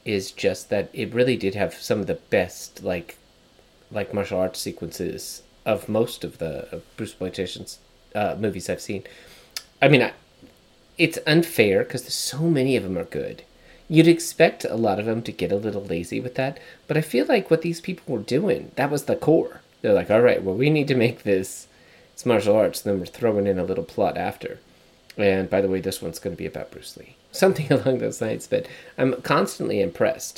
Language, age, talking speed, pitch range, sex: English, 30-49, 205 wpm, 95-155 Hz, male